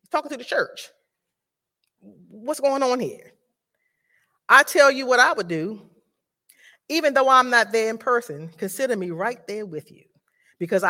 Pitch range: 165-240 Hz